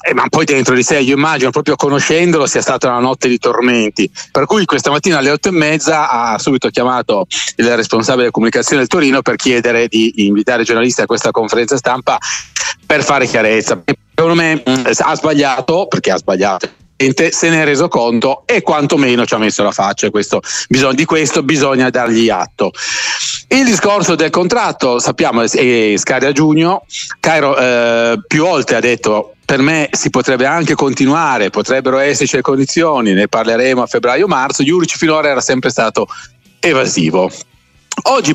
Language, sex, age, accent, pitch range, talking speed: Italian, male, 40-59, native, 115-150 Hz, 165 wpm